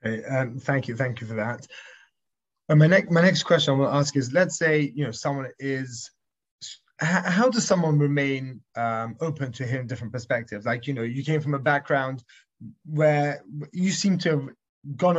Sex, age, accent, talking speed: male, 20-39, British, 180 wpm